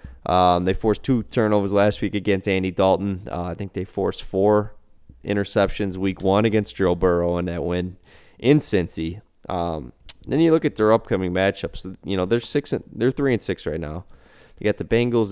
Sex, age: male, 20-39